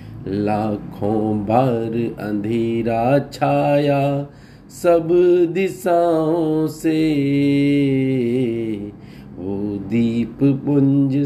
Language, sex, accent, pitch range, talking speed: Hindi, male, native, 125-160 Hz, 55 wpm